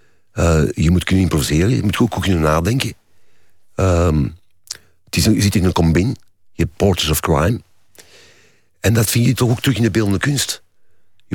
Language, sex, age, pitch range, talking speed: Dutch, male, 50-69, 90-110 Hz, 185 wpm